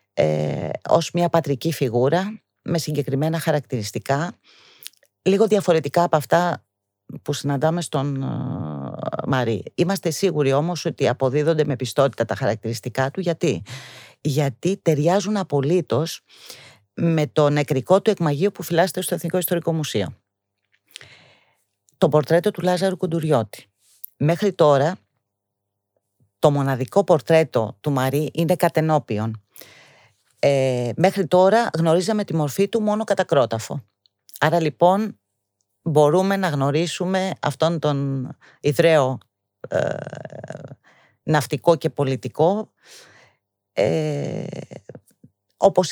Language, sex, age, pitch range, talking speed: Greek, female, 40-59, 125-170 Hz, 105 wpm